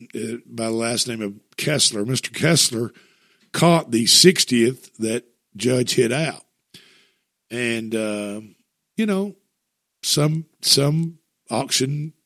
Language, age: English, 50-69